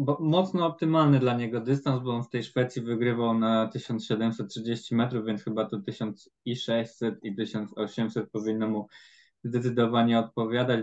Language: Polish